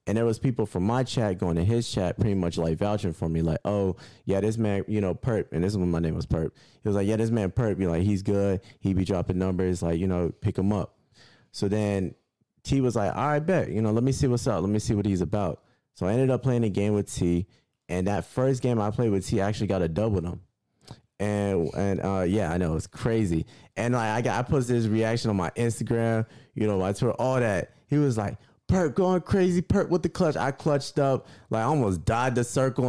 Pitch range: 90-120 Hz